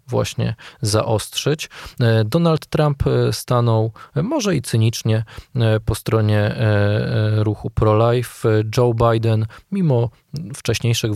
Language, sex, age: Polish, male, 20-39